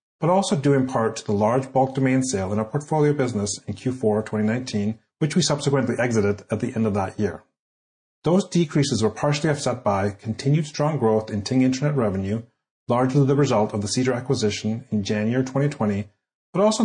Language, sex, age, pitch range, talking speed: English, male, 30-49, 105-135 Hz, 190 wpm